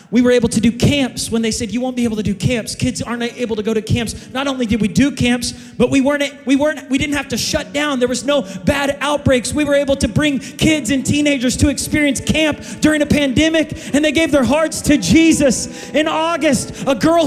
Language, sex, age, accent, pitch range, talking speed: English, male, 30-49, American, 245-305 Hz, 245 wpm